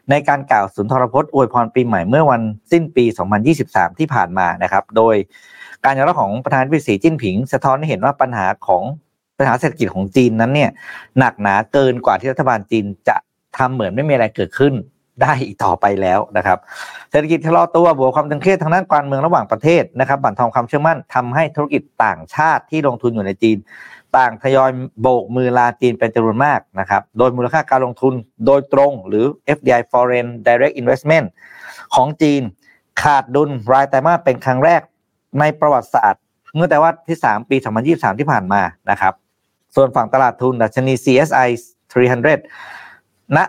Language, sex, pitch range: Thai, male, 115-145 Hz